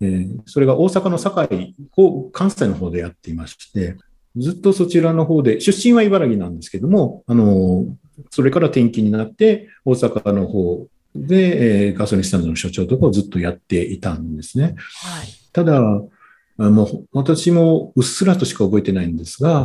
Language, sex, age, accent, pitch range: Japanese, male, 50-69, native, 100-160 Hz